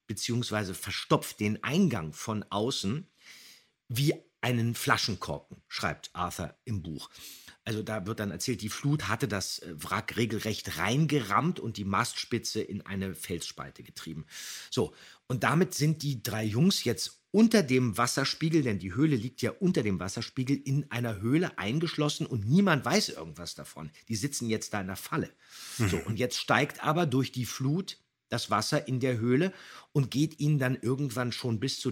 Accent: German